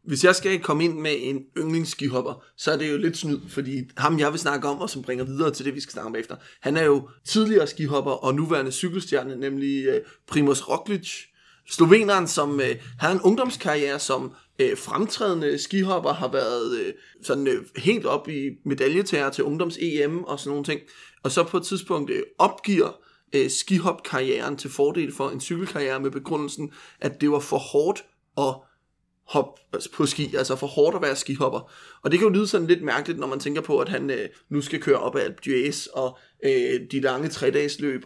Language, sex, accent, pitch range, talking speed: Danish, male, native, 140-200 Hz, 200 wpm